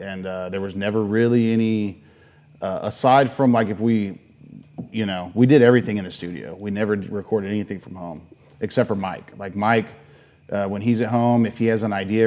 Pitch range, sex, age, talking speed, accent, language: 90-110 Hz, male, 30-49, 205 wpm, American, English